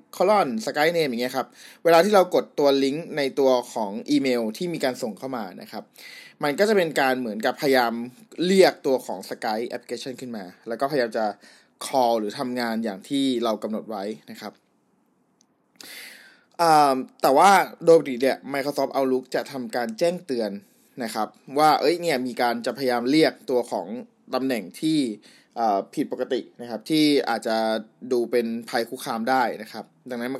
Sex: male